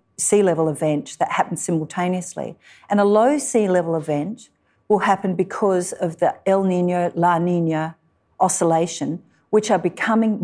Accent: Australian